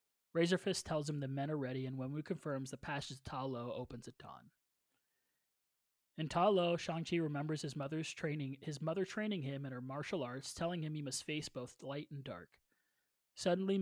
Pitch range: 135-165 Hz